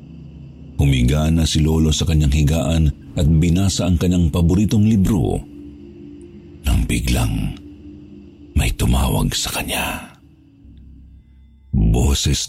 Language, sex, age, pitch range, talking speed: Filipino, male, 50-69, 70-100 Hz, 95 wpm